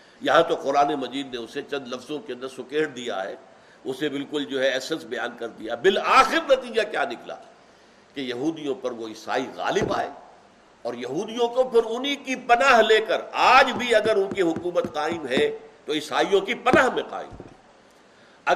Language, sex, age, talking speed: Urdu, male, 60-79, 180 wpm